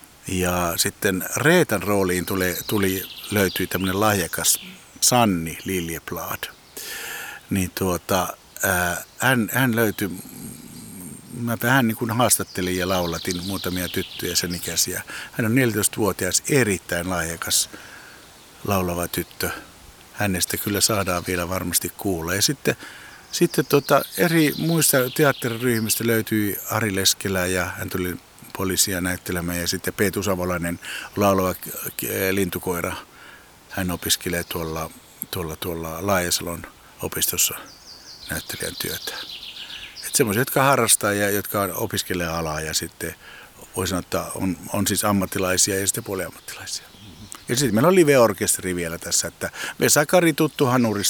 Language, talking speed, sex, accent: Finnish, 115 wpm, male, native